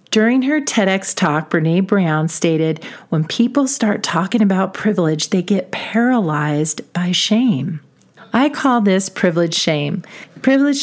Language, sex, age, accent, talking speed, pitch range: English, female, 40-59, American, 135 wpm, 170-220 Hz